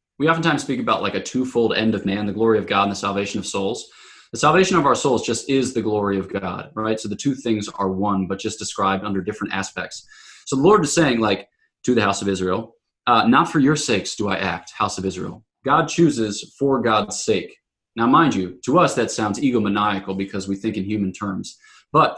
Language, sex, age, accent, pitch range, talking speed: English, male, 20-39, American, 100-135 Hz, 230 wpm